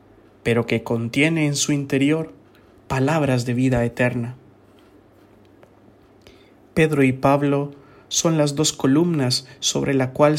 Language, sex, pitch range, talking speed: English, male, 130-155 Hz, 115 wpm